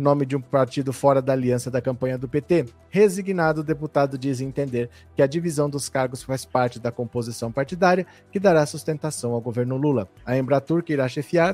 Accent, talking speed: Brazilian, 190 wpm